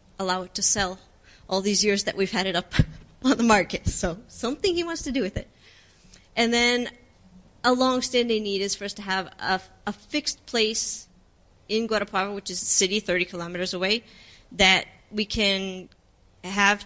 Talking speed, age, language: 180 wpm, 30-49, English